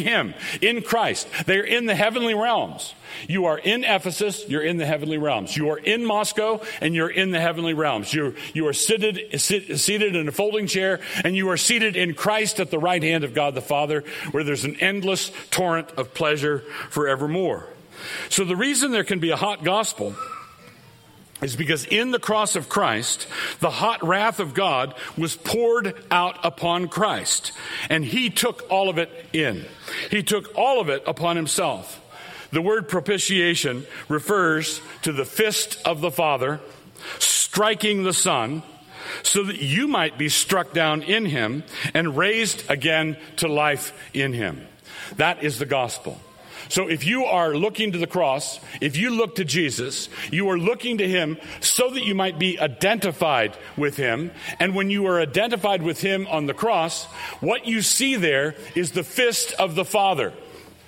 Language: English